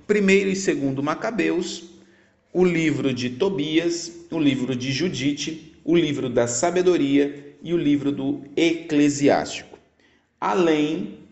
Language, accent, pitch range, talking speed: Portuguese, Brazilian, 115-165 Hz, 115 wpm